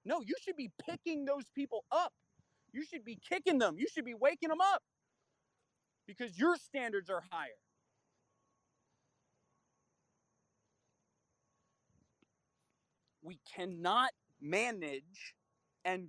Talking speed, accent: 105 wpm, American